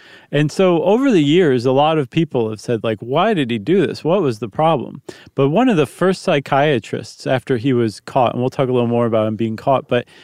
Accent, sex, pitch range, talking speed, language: American, male, 120-155 Hz, 245 wpm, English